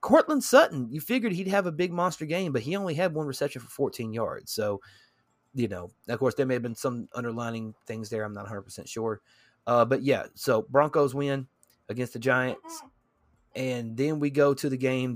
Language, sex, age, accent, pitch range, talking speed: English, male, 30-49, American, 125-150 Hz, 205 wpm